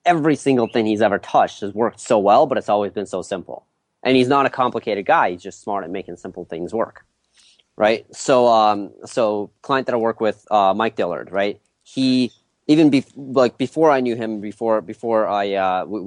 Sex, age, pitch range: male, 30-49, 100-125 Hz